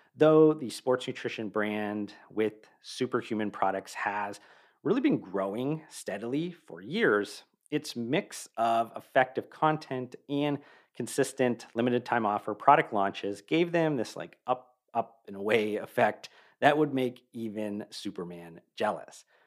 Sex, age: male, 40-59